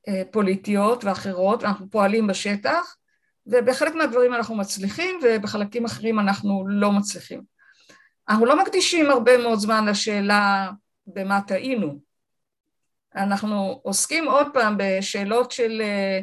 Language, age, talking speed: Hebrew, 50-69, 105 wpm